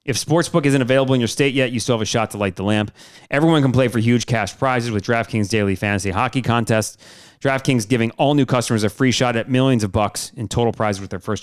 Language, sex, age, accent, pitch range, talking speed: English, male, 30-49, American, 110-135 Hz, 250 wpm